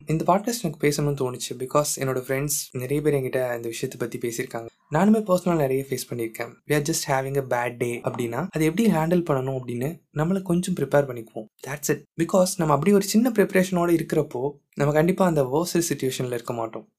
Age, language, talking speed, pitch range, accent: 20-39, Tamil, 165 wpm, 125-150 Hz, native